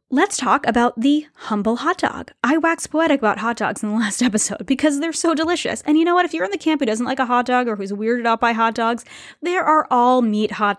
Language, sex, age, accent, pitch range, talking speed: English, female, 10-29, American, 210-275 Hz, 265 wpm